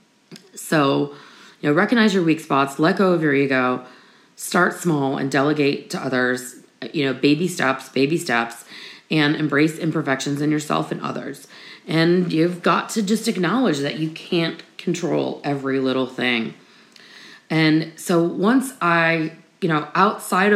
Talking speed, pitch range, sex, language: 150 wpm, 155-195 Hz, female, English